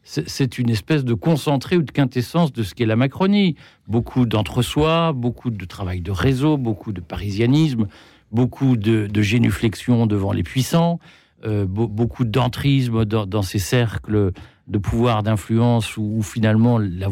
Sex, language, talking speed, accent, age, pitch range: male, French, 155 wpm, French, 50-69, 105-135 Hz